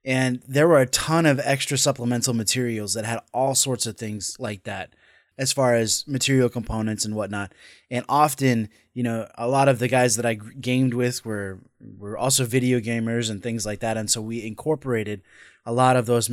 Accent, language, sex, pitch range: American, English, male, 110-130 Hz